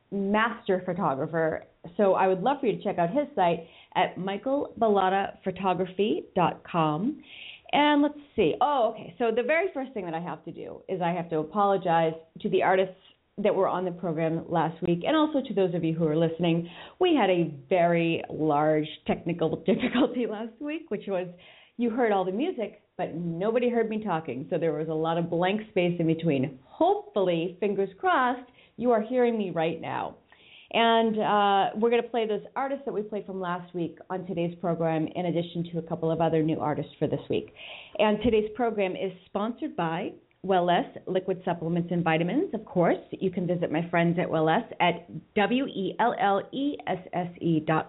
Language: English